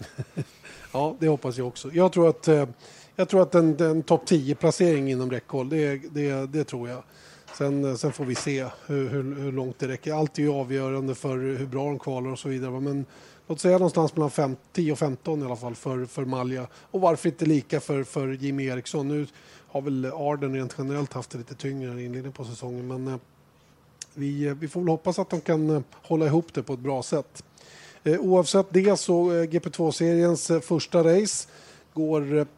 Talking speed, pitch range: 185 wpm, 135-160 Hz